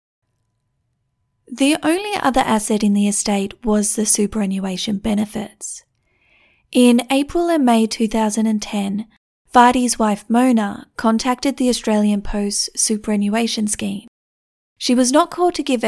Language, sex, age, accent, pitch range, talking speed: English, female, 30-49, Australian, 210-245 Hz, 115 wpm